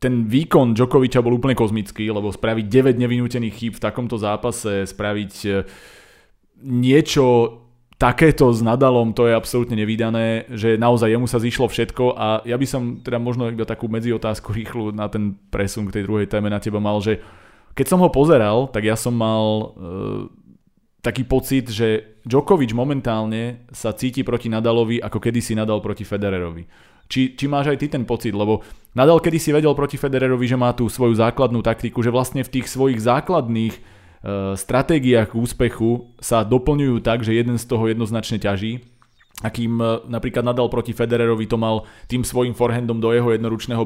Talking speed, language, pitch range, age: 170 wpm, Slovak, 110-125 Hz, 20-39